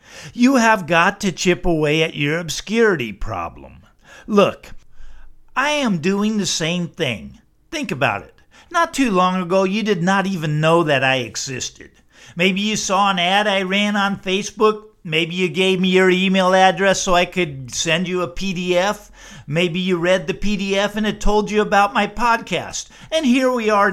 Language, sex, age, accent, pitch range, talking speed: English, male, 50-69, American, 170-215 Hz, 180 wpm